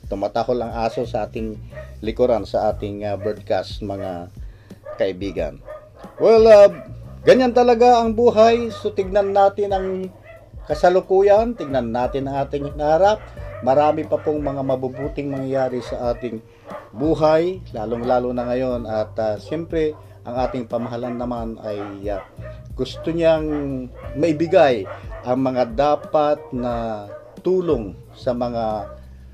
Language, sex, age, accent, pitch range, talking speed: Filipino, male, 50-69, native, 105-135 Hz, 115 wpm